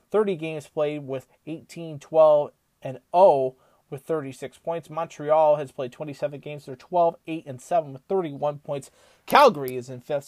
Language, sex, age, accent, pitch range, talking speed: English, male, 30-49, American, 140-175 Hz, 165 wpm